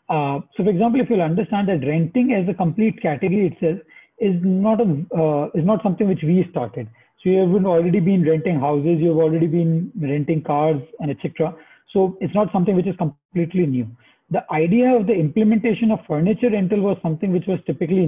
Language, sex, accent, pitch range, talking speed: English, male, Indian, 160-200 Hz, 195 wpm